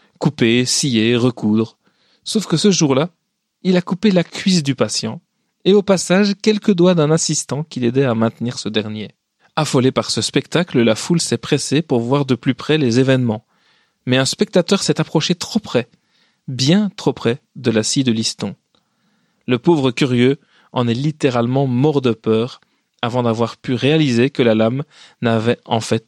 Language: French